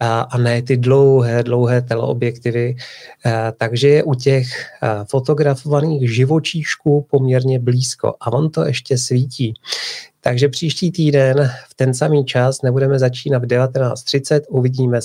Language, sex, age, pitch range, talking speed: Czech, male, 30-49, 115-135 Hz, 125 wpm